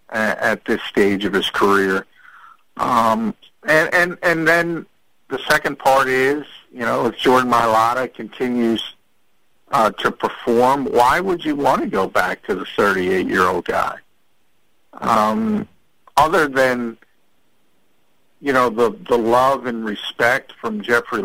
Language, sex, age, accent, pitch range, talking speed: English, male, 60-79, American, 115-150 Hz, 140 wpm